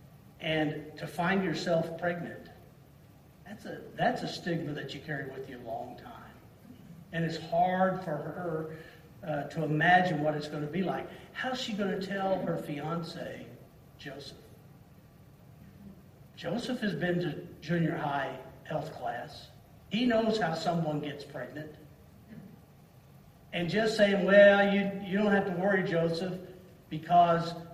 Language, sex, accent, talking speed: English, male, American, 145 wpm